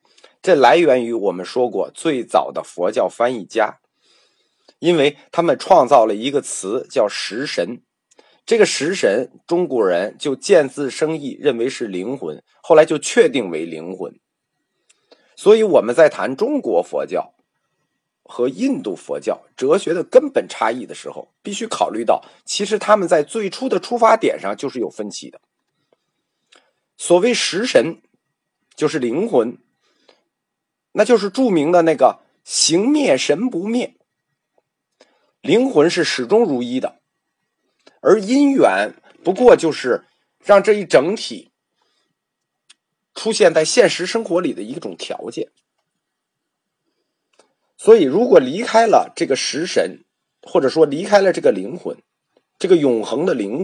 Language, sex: Chinese, male